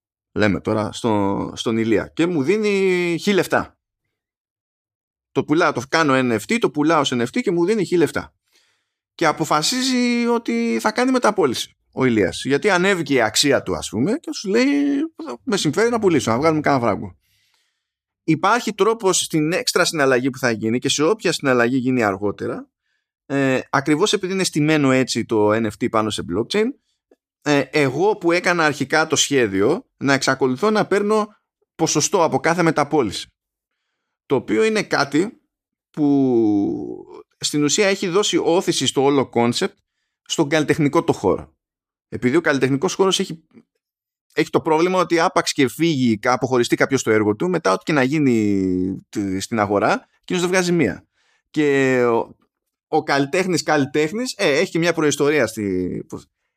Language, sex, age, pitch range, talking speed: Greek, male, 20-39, 125-190 Hz, 155 wpm